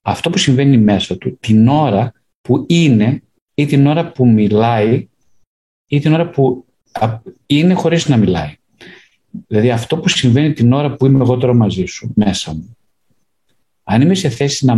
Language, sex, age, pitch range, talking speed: Greek, male, 50-69, 110-140 Hz, 165 wpm